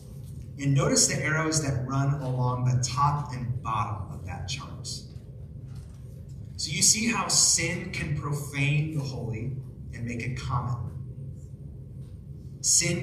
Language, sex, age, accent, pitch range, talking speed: English, male, 30-49, American, 125-155 Hz, 130 wpm